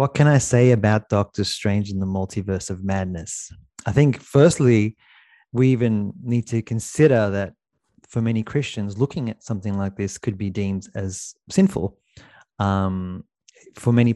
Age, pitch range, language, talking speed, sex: 30-49, 105-130 Hz, English, 155 wpm, male